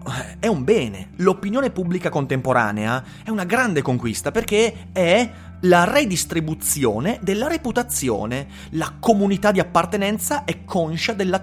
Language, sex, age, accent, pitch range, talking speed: Italian, male, 30-49, native, 125-195 Hz, 120 wpm